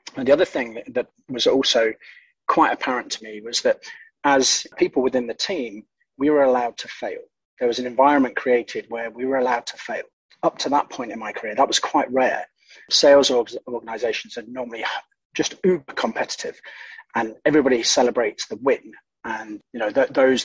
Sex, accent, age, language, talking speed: male, British, 30-49, English, 180 wpm